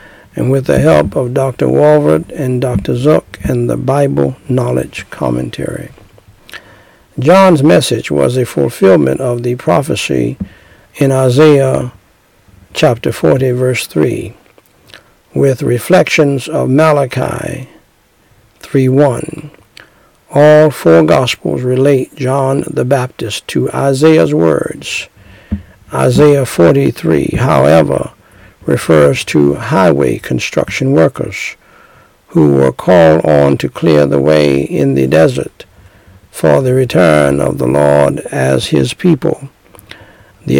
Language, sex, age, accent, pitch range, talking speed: English, male, 60-79, American, 85-140 Hz, 110 wpm